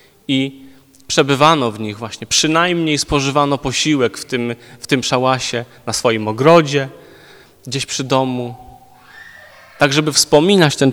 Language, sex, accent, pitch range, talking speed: Polish, male, native, 130-165 Hz, 120 wpm